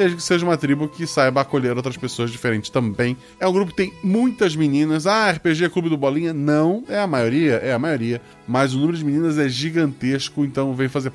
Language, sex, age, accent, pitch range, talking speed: Portuguese, male, 20-39, Brazilian, 125-175 Hz, 215 wpm